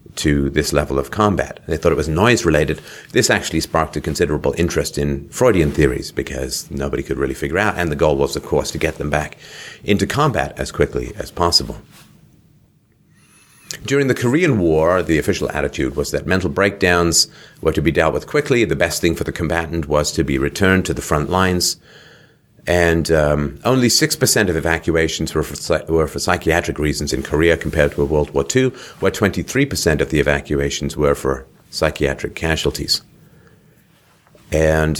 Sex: male